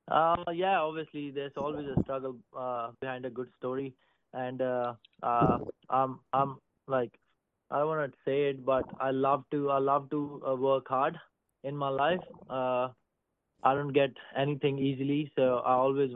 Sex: male